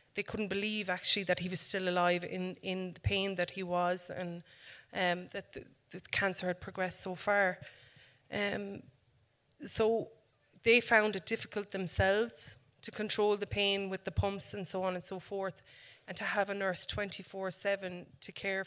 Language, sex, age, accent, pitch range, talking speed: English, female, 20-39, Irish, 180-200 Hz, 175 wpm